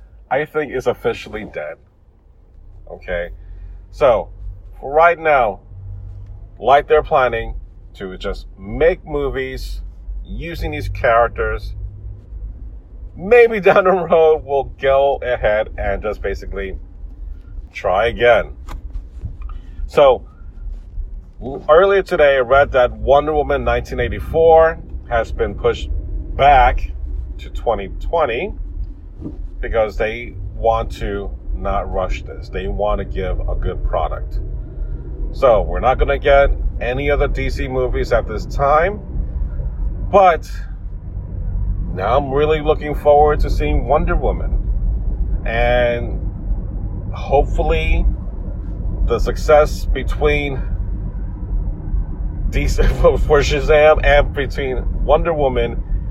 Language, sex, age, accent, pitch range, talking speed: English, male, 40-59, American, 85-130 Hz, 100 wpm